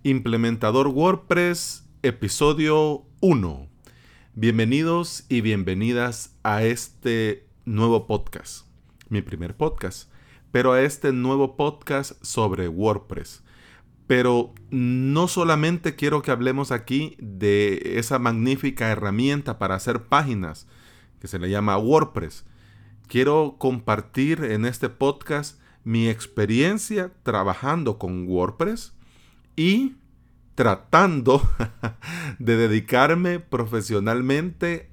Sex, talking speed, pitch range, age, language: male, 95 wpm, 105-140 Hz, 40-59, Spanish